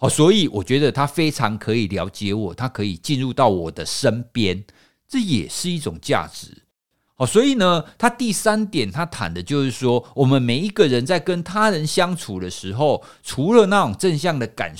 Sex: male